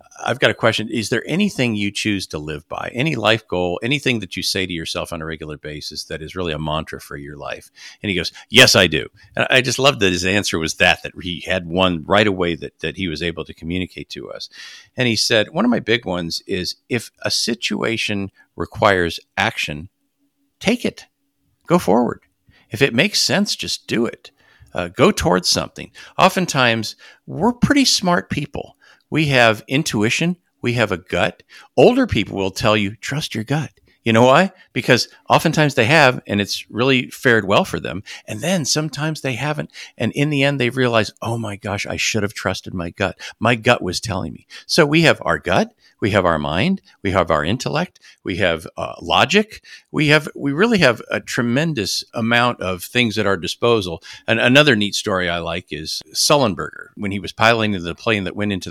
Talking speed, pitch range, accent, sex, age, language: 205 wpm, 90-140 Hz, American, male, 50-69, English